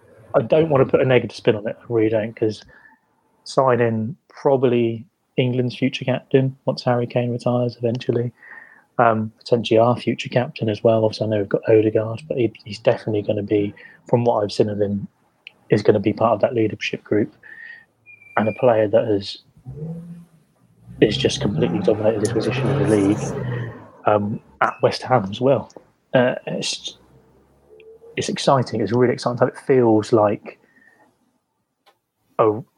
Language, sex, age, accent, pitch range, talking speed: English, male, 30-49, British, 110-140 Hz, 170 wpm